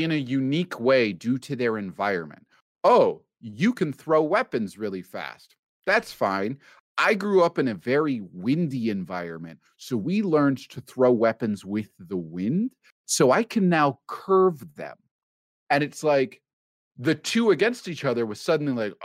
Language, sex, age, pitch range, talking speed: English, male, 30-49, 115-170 Hz, 160 wpm